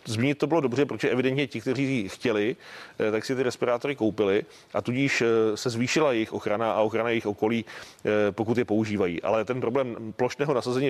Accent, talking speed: native, 175 wpm